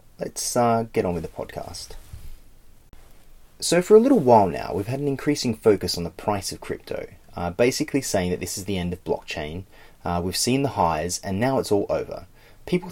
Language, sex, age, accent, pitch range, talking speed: English, male, 30-49, Australian, 90-135 Hz, 205 wpm